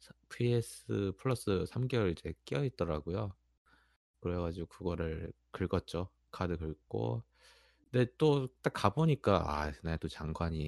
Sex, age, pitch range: male, 20-39, 75-105 Hz